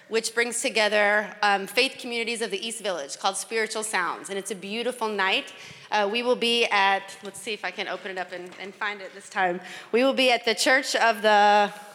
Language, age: English, 30-49